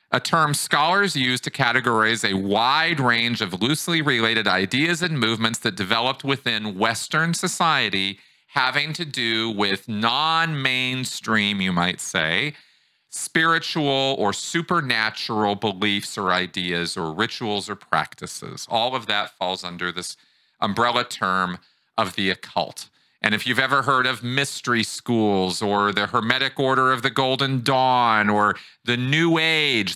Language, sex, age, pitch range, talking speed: English, male, 40-59, 100-135 Hz, 140 wpm